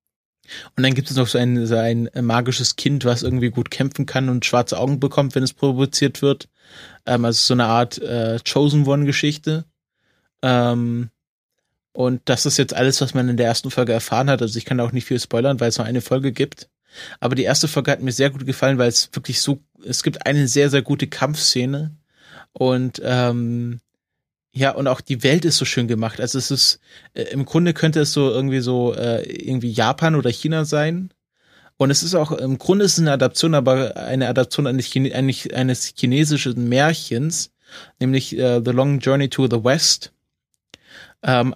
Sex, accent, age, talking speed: male, German, 20-39, 190 wpm